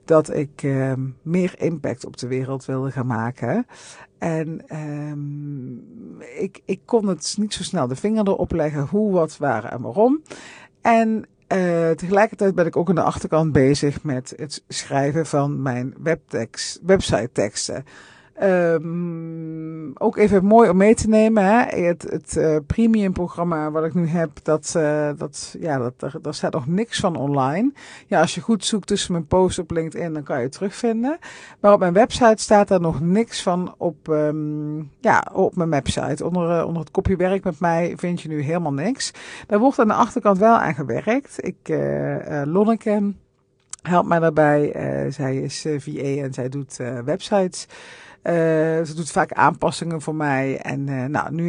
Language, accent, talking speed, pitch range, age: Dutch, Dutch, 180 wpm, 150-195 Hz, 50-69